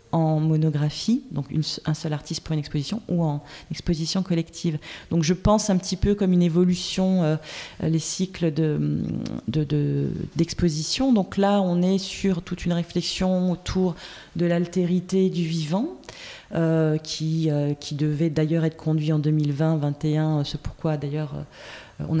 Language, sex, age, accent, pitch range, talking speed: French, female, 30-49, French, 155-180 Hz, 155 wpm